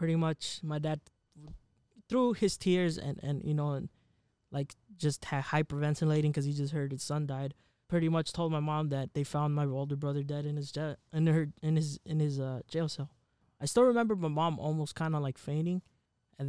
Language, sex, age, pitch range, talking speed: English, male, 20-39, 140-165 Hz, 210 wpm